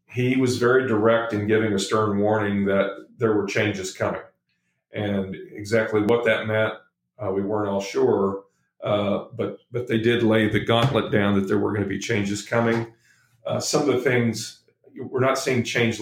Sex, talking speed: male, 185 wpm